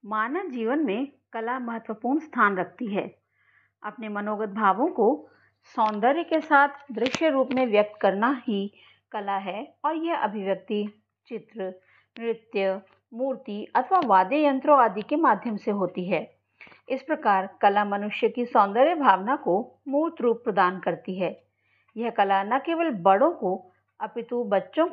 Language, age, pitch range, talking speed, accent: Hindi, 50-69, 195-270 Hz, 140 wpm, native